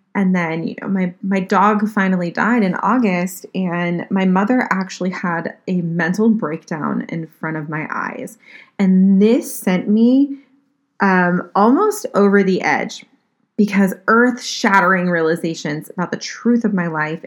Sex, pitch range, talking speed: female, 170-215 Hz, 150 wpm